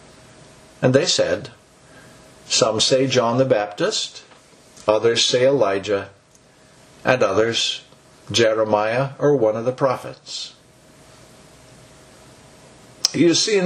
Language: English